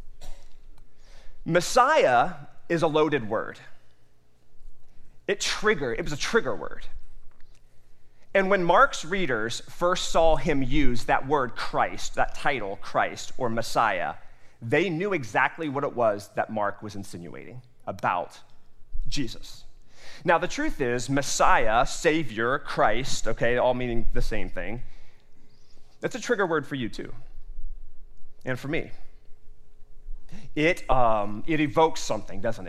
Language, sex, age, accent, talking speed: English, male, 30-49, American, 125 wpm